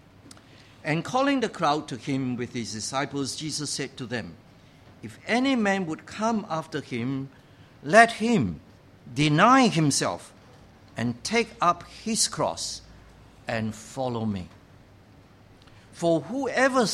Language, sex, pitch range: English, male, 115-180 Hz